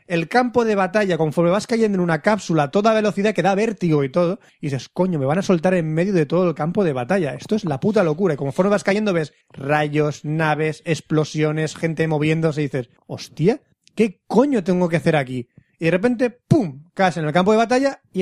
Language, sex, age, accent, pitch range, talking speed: Spanish, male, 30-49, Spanish, 150-200 Hz, 225 wpm